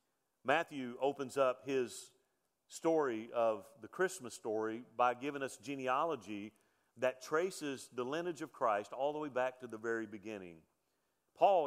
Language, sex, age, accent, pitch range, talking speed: English, male, 40-59, American, 125-165 Hz, 145 wpm